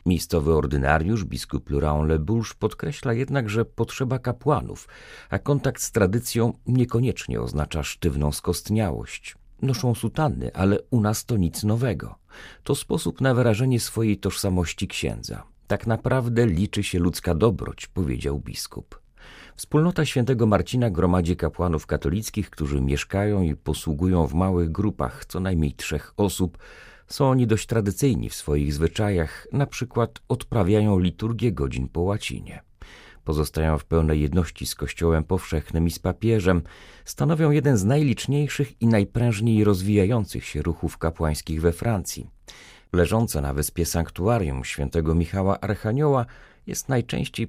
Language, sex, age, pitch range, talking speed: Polish, male, 40-59, 80-115 Hz, 130 wpm